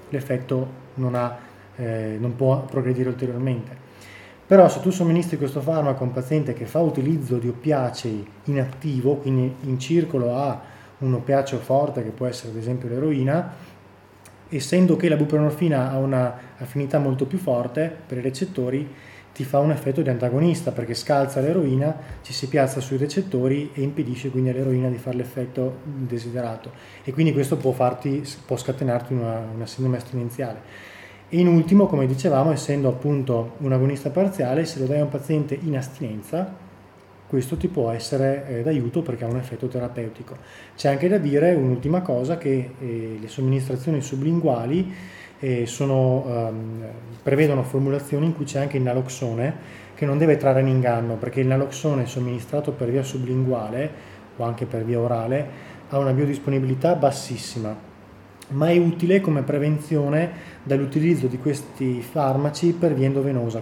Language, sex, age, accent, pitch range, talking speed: Italian, male, 20-39, native, 125-145 Hz, 155 wpm